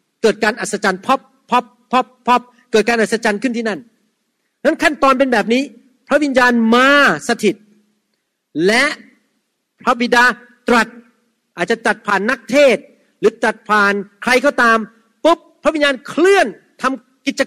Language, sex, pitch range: Thai, male, 200-255 Hz